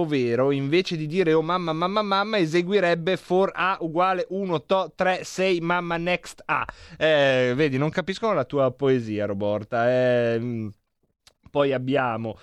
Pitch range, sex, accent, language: 135-190 Hz, male, native, Italian